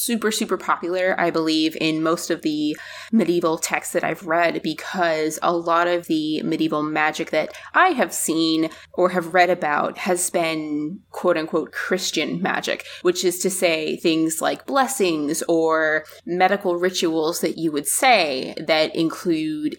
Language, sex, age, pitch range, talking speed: English, female, 20-39, 160-185 Hz, 155 wpm